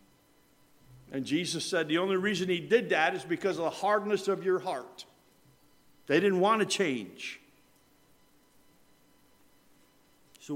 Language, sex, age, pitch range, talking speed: English, male, 60-79, 125-180 Hz, 130 wpm